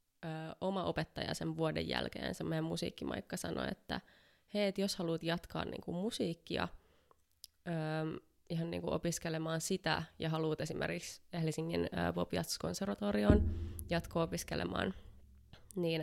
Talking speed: 125 wpm